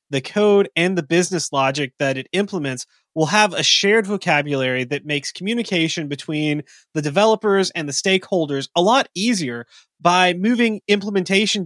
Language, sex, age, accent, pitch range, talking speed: English, male, 20-39, American, 140-190 Hz, 150 wpm